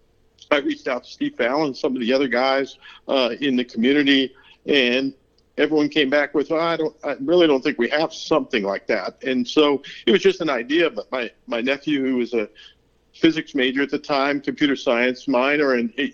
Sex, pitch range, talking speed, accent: male, 135-160 Hz, 210 wpm, American